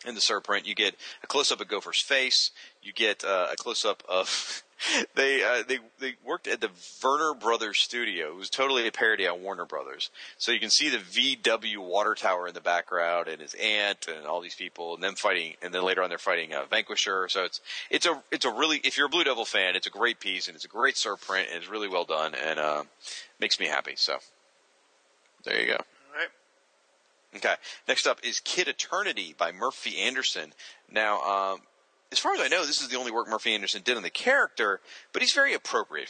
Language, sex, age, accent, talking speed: English, male, 30-49, American, 220 wpm